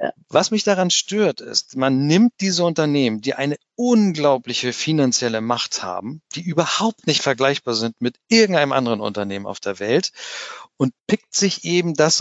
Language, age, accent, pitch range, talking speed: German, 50-69, German, 120-160 Hz, 155 wpm